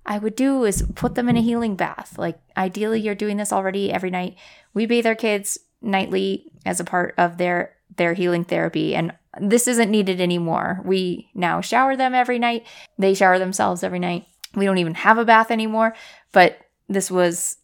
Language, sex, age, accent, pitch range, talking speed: English, female, 20-39, American, 165-210 Hz, 195 wpm